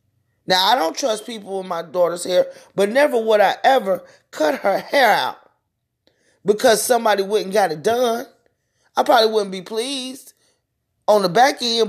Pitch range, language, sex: 200-285 Hz, English, male